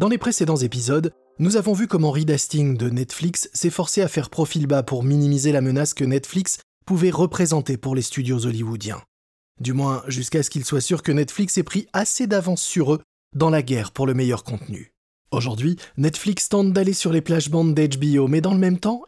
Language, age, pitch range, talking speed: French, 20-39, 130-175 Hz, 200 wpm